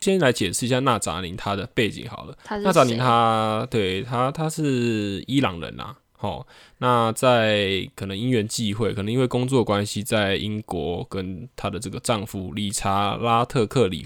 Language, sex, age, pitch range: Chinese, male, 10-29, 100-125 Hz